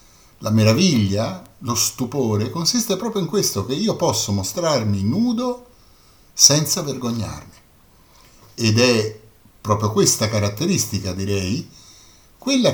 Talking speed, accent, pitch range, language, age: 105 wpm, native, 105-170 Hz, Italian, 50-69